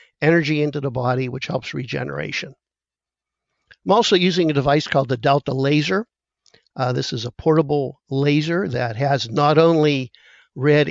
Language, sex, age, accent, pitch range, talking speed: English, male, 50-69, American, 130-155 Hz, 150 wpm